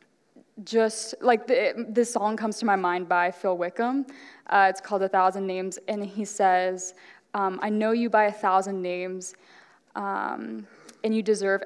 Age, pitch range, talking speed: 10-29, 195-240 Hz, 175 wpm